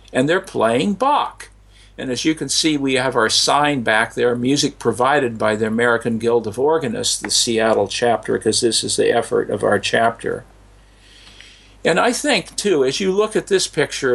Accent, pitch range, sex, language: American, 120-175 Hz, male, English